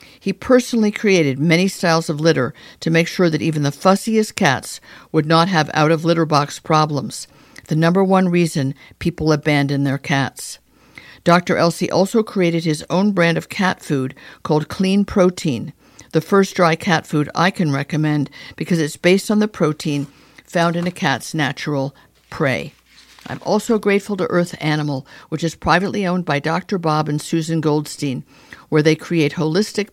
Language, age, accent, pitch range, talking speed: English, 50-69, American, 150-180 Hz, 165 wpm